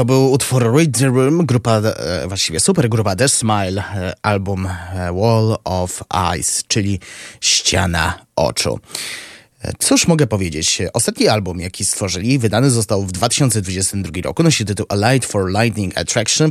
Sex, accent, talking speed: male, native, 135 wpm